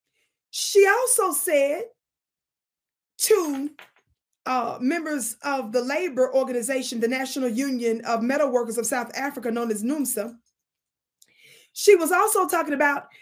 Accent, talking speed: American, 125 wpm